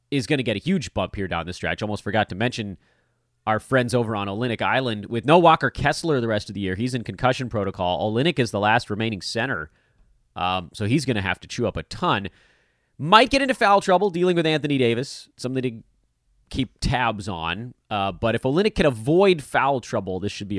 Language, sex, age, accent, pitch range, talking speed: English, male, 30-49, American, 100-145 Hz, 220 wpm